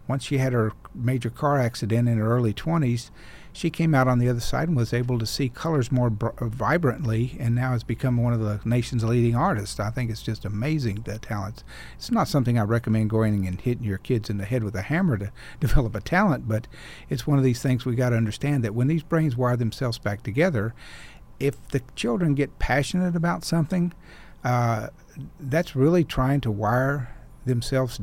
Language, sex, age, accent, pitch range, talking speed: English, male, 50-69, American, 115-140 Hz, 205 wpm